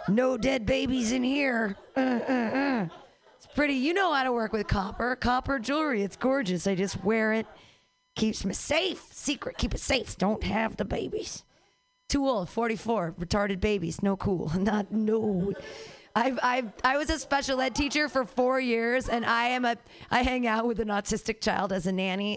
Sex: female